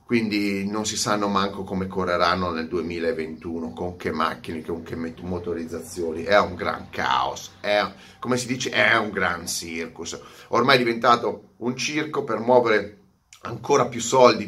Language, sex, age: Italian, male, 30-49